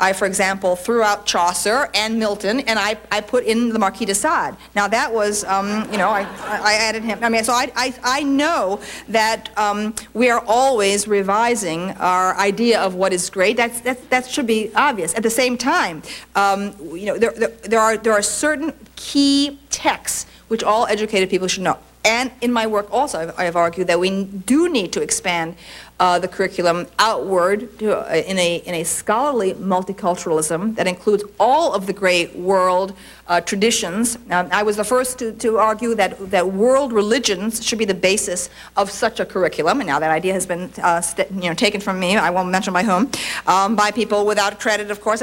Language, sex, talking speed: English, female, 205 wpm